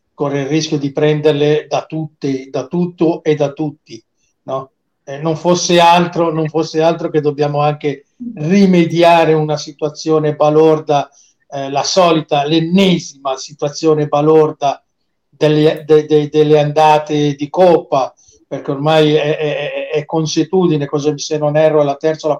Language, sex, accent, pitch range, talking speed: Italian, male, native, 145-165 Hz, 145 wpm